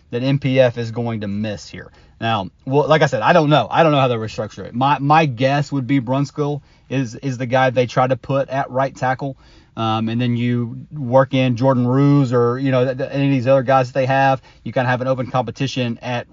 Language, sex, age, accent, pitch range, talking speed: English, male, 30-49, American, 115-135 Hz, 245 wpm